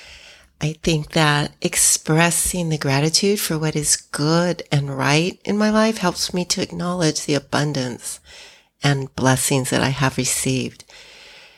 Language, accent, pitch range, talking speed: English, American, 140-175 Hz, 140 wpm